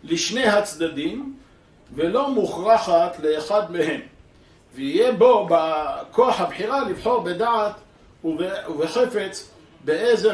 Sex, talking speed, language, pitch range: male, 80 wpm, Hebrew, 170-245 Hz